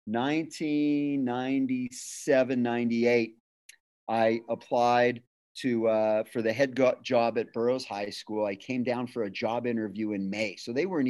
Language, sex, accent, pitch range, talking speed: English, male, American, 110-130 Hz, 140 wpm